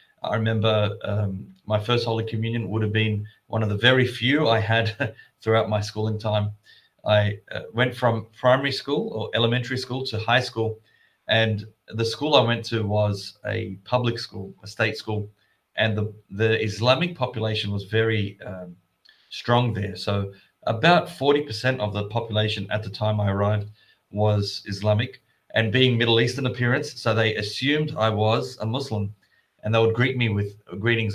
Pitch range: 105-120 Hz